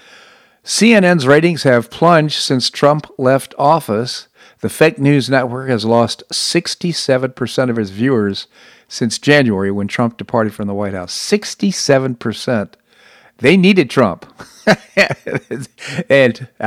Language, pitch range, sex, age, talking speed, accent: English, 110-140 Hz, male, 50-69, 115 wpm, American